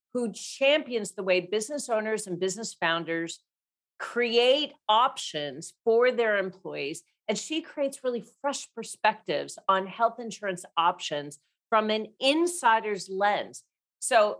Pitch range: 185-240 Hz